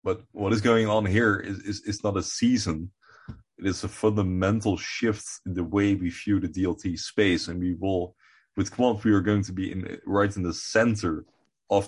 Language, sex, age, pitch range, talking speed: English, male, 20-39, 85-105 Hz, 205 wpm